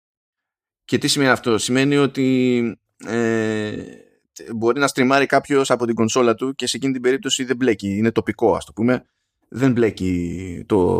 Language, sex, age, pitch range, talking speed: Greek, male, 20-39, 105-140 Hz, 165 wpm